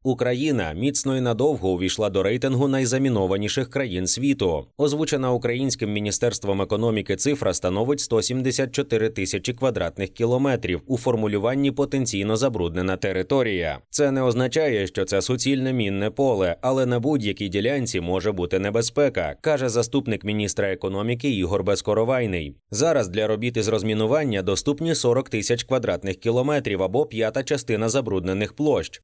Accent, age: native, 20-39